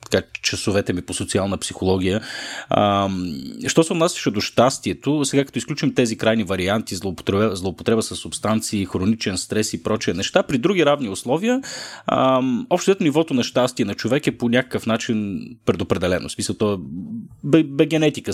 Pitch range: 95-135 Hz